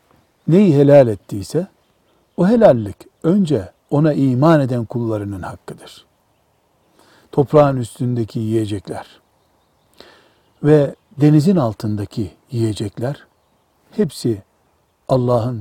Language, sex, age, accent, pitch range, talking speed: Turkish, male, 60-79, native, 115-175 Hz, 75 wpm